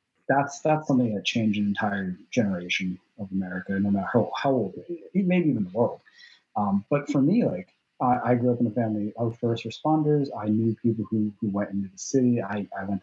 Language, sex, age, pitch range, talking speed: English, male, 30-49, 100-125 Hz, 210 wpm